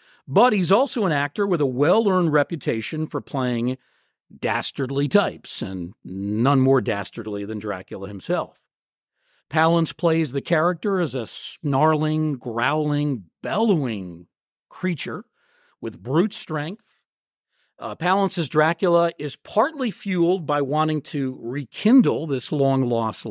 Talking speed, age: 115 wpm, 50-69